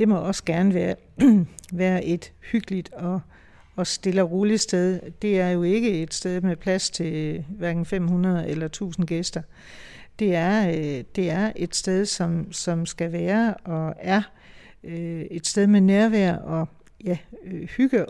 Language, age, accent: Danish, 60-79, native